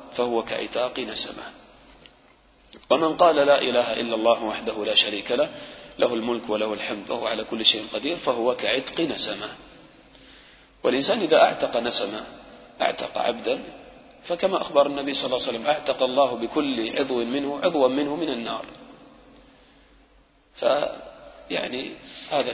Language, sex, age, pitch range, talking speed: English, male, 40-59, 115-135 Hz, 130 wpm